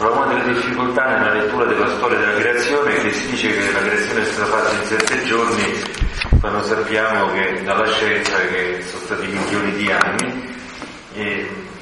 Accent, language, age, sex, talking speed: native, Italian, 40-59, male, 175 wpm